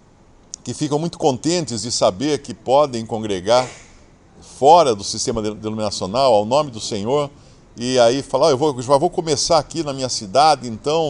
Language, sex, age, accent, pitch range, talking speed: English, male, 50-69, Brazilian, 110-160 Hz, 160 wpm